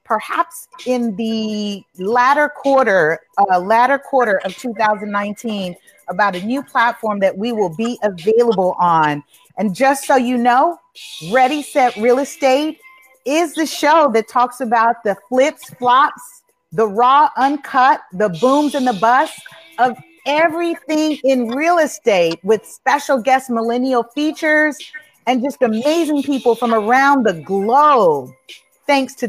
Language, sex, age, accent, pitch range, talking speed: English, female, 40-59, American, 220-295 Hz, 135 wpm